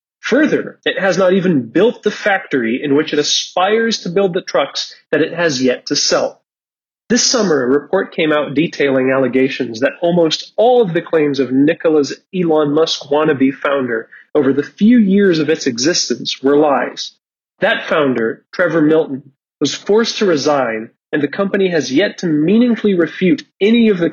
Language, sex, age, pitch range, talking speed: English, male, 30-49, 140-195 Hz, 175 wpm